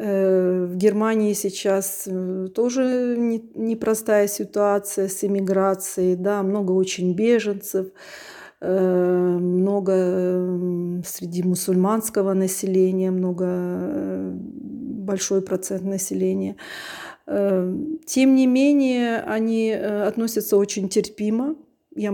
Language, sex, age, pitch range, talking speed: Ukrainian, female, 30-49, 185-230 Hz, 75 wpm